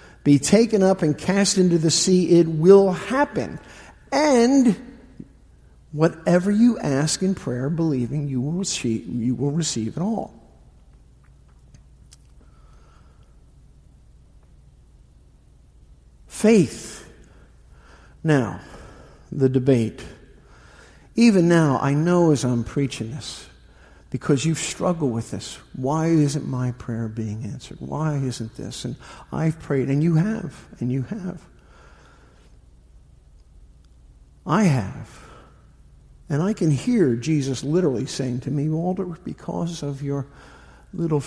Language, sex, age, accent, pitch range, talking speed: English, male, 50-69, American, 110-170 Hz, 110 wpm